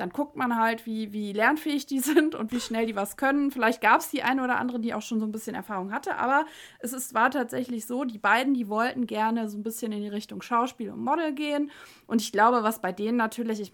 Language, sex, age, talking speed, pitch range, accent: German, female, 20-39, 255 wpm, 205-260 Hz, German